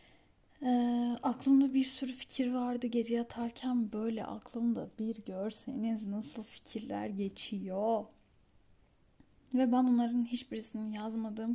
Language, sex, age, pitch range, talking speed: Turkish, female, 10-29, 220-255 Hz, 105 wpm